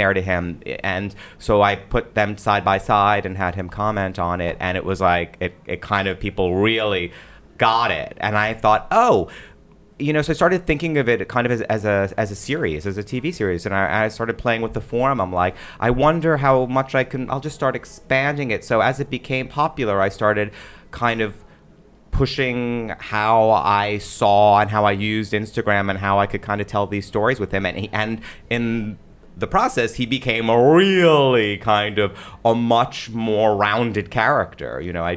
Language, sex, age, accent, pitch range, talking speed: English, male, 30-49, American, 95-120 Hz, 210 wpm